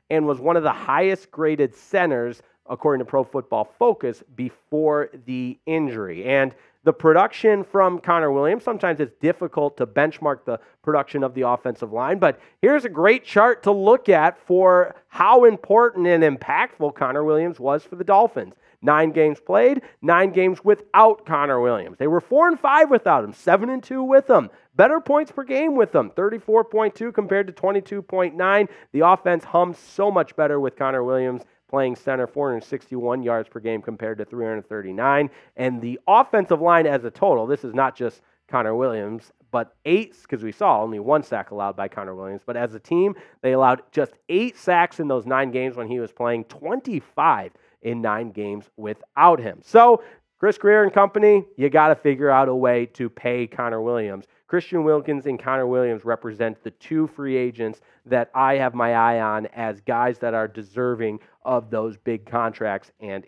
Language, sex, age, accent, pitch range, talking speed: English, male, 40-59, American, 120-190 Hz, 180 wpm